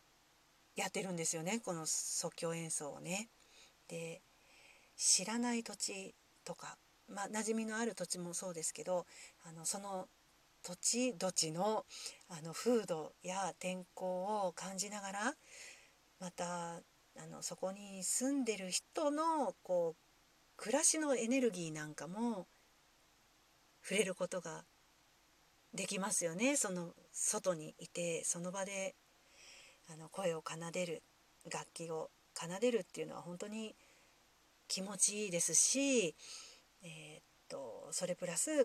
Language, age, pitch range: Japanese, 40-59, 170-240 Hz